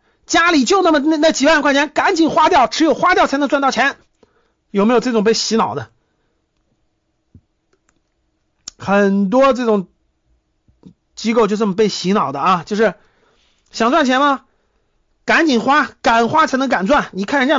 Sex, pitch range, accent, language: male, 210-295 Hz, native, Chinese